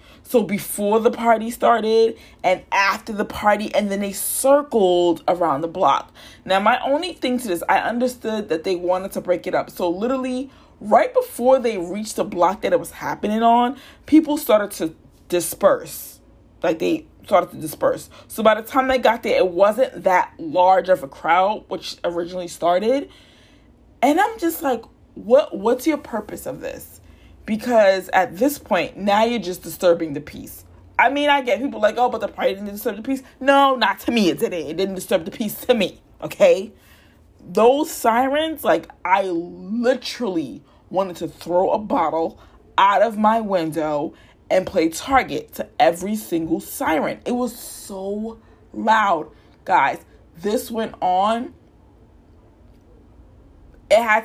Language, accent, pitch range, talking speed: English, American, 180-260 Hz, 165 wpm